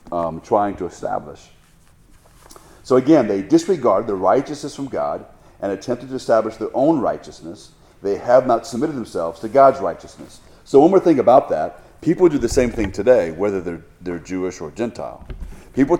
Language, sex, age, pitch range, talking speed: English, male, 40-59, 90-125 Hz, 175 wpm